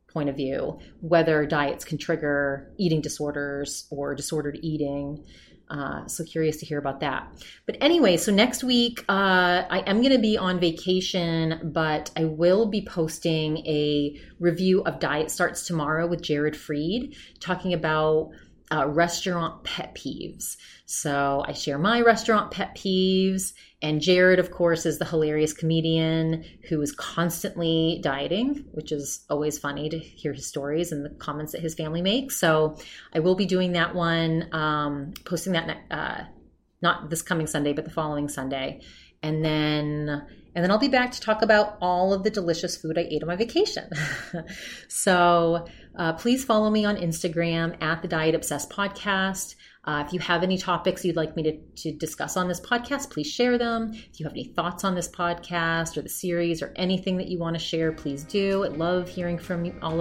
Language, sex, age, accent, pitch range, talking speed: English, female, 30-49, American, 155-185 Hz, 180 wpm